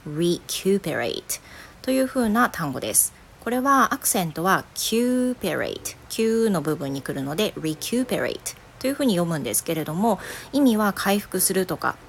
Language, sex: Japanese, female